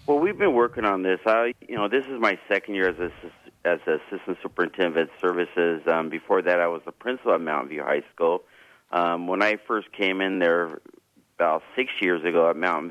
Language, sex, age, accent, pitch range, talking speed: English, male, 40-59, American, 85-100 Hz, 215 wpm